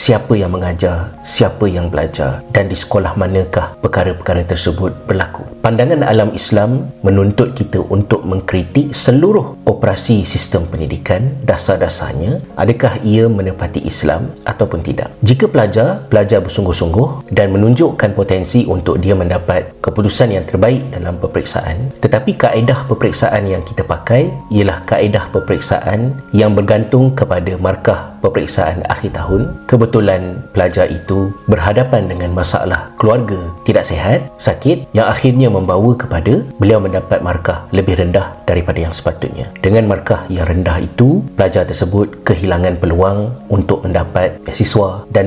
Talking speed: 130 wpm